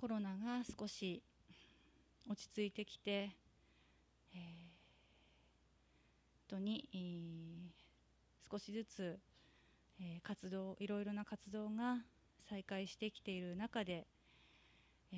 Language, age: Japanese, 30-49